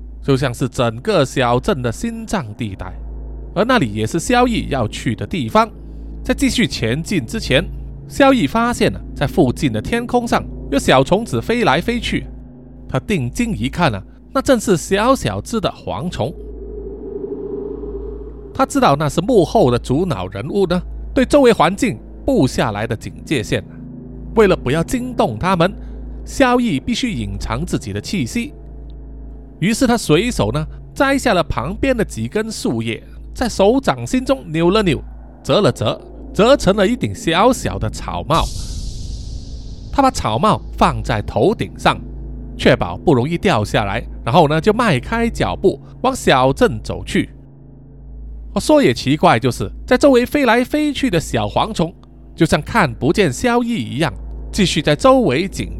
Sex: male